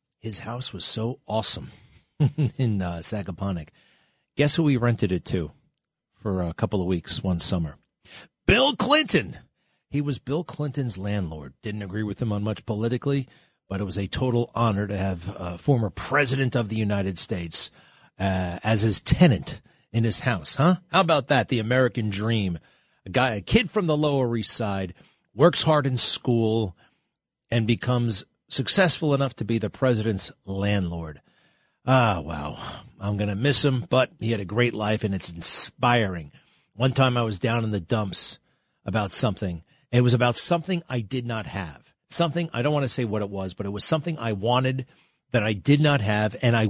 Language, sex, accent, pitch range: English, male, American, 100-135 Hz